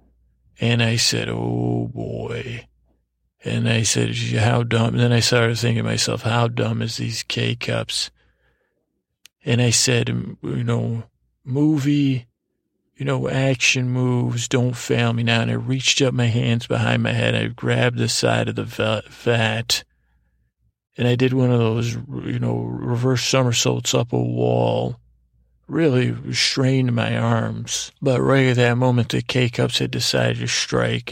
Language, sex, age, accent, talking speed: English, male, 40-59, American, 155 wpm